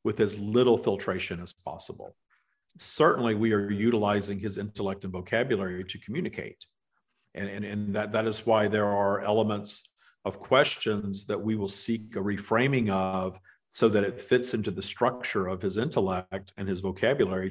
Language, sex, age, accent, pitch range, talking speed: English, male, 50-69, American, 100-115 Hz, 165 wpm